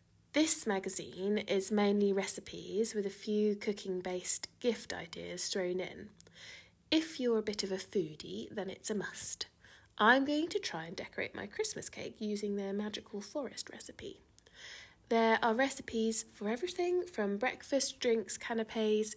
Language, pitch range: English, 190-250 Hz